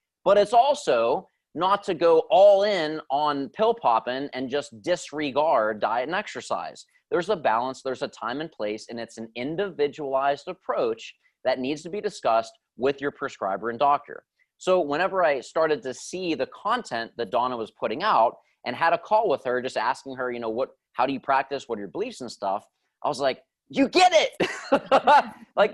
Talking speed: 190 wpm